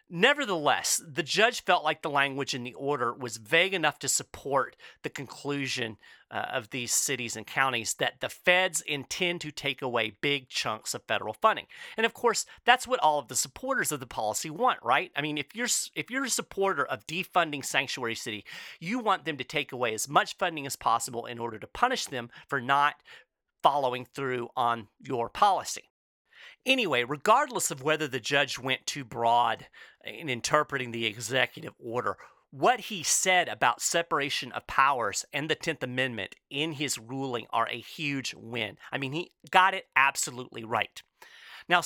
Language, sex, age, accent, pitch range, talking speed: English, male, 40-59, American, 125-180 Hz, 180 wpm